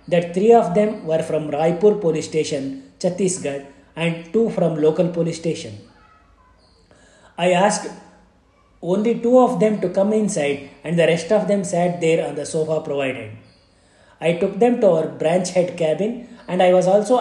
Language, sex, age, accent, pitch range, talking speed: Kannada, male, 30-49, native, 160-215 Hz, 165 wpm